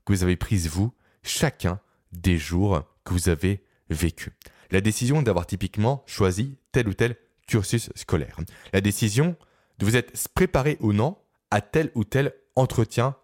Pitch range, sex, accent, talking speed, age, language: 95-135 Hz, male, French, 160 wpm, 20-39, French